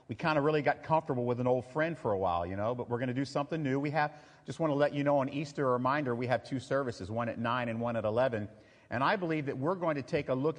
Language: English